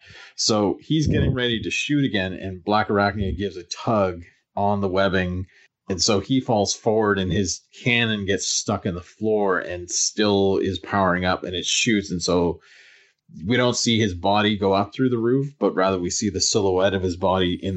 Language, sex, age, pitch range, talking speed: English, male, 30-49, 95-110 Hz, 200 wpm